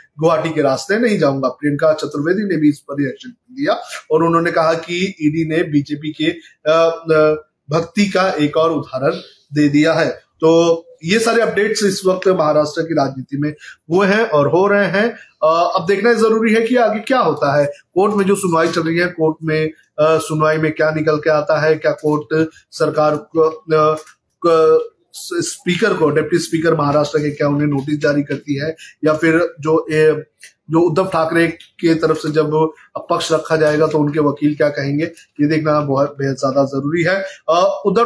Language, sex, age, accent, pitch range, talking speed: Hindi, male, 30-49, native, 150-190 Hz, 180 wpm